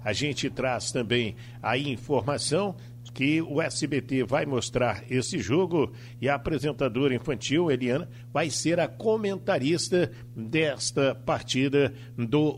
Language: Portuguese